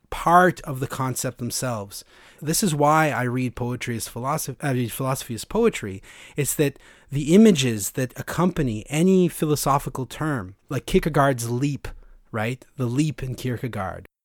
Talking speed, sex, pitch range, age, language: 145 wpm, male, 120-150 Hz, 30-49, English